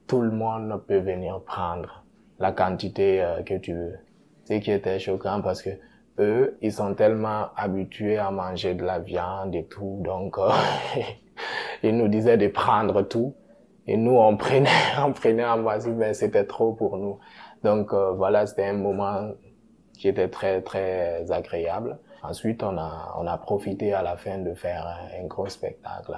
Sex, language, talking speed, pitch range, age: male, French, 175 wpm, 95-115 Hz, 20-39